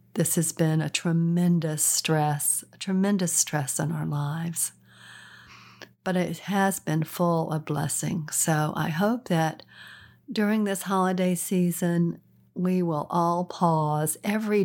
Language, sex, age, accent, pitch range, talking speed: English, female, 50-69, American, 155-195 Hz, 130 wpm